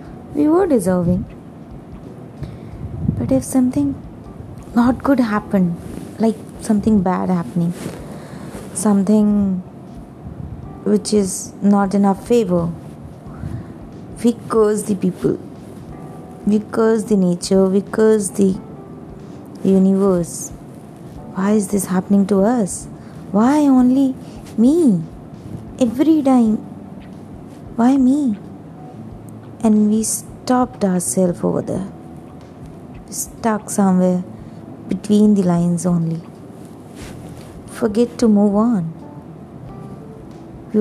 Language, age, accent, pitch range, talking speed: Hindi, 20-39, native, 190-235 Hz, 90 wpm